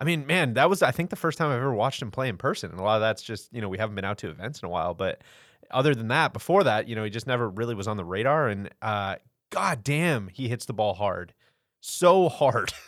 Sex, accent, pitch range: male, American, 110-140 Hz